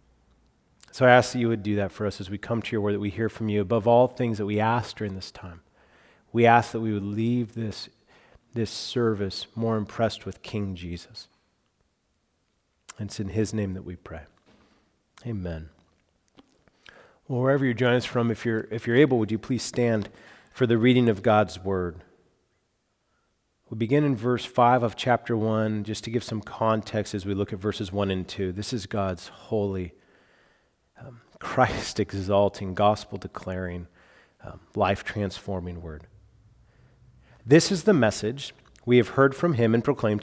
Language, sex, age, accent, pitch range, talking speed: English, male, 40-59, American, 100-125 Hz, 175 wpm